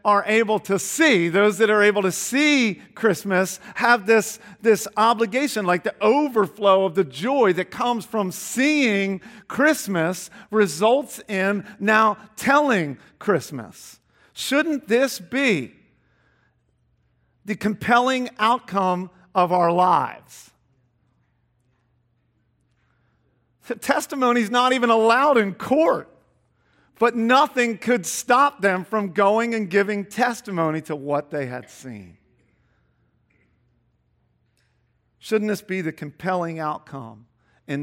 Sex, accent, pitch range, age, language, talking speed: male, American, 140-225 Hz, 50-69, English, 110 wpm